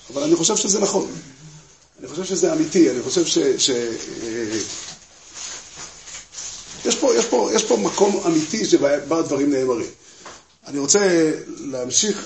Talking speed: 135 wpm